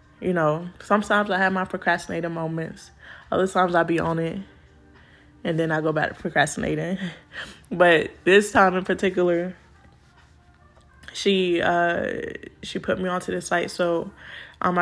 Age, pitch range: 20-39, 145-185 Hz